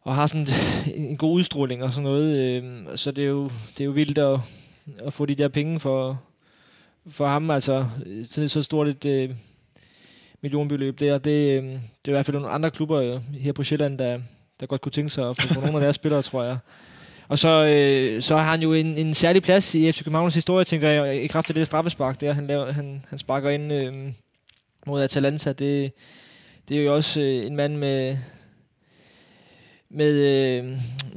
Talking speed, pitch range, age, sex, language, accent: 195 wpm, 135-155 Hz, 20-39, male, Danish, native